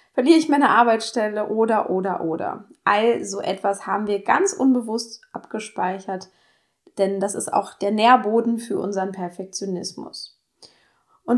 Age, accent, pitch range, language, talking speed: 20-39, German, 195-230 Hz, German, 130 wpm